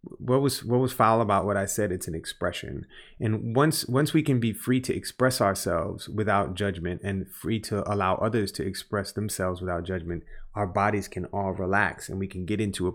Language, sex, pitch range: English, male, 95-115 Hz